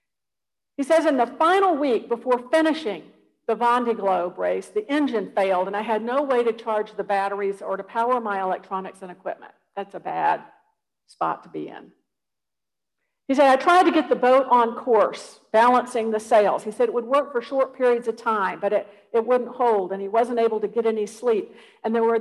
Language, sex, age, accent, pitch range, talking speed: English, female, 50-69, American, 195-250 Hz, 205 wpm